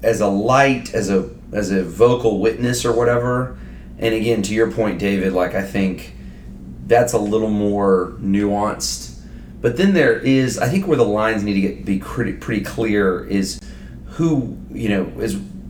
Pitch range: 95-115 Hz